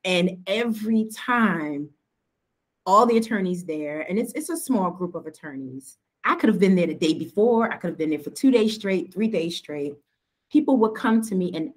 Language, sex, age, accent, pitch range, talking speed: English, female, 30-49, American, 175-235 Hz, 210 wpm